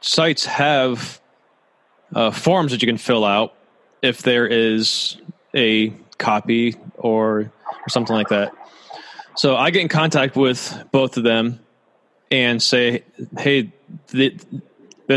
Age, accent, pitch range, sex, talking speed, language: 20-39, American, 110-130 Hz, male, 125 wpm, English